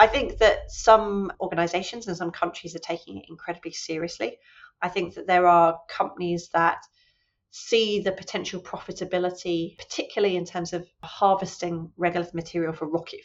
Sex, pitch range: female, 170-195 Hz